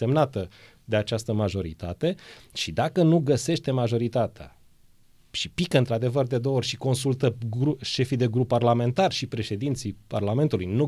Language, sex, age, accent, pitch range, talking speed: Romanian, male, 30-49, native, 105-135 Hz, 140 wpm